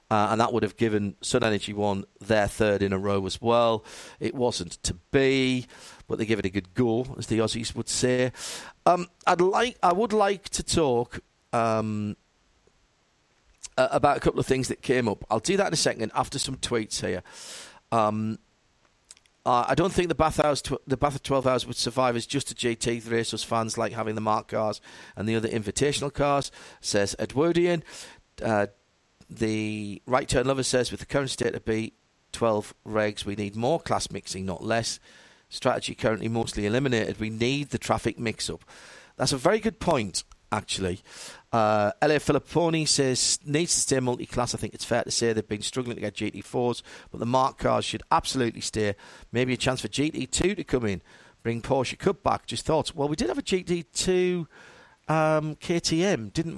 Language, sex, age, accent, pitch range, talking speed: English, male, 50-69, British, 110-140 Hz, 185 wpm